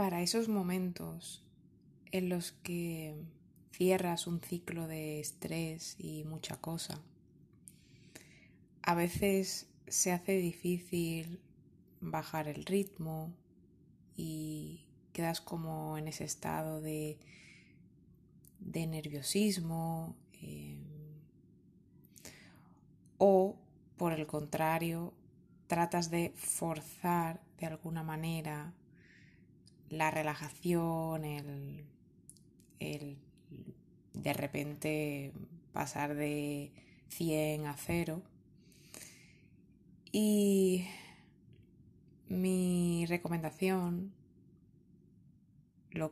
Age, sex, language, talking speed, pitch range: 20-39, female, Spanish, 75 wpm, 155-175 Hz